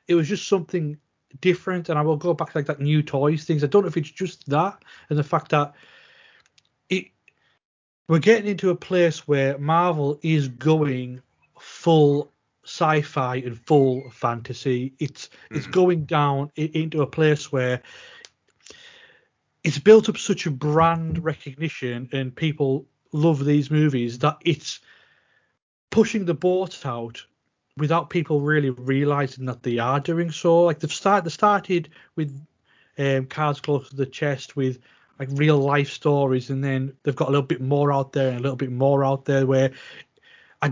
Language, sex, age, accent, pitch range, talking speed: English, male, 30-49, British, 135-165 Hz, 165 wpm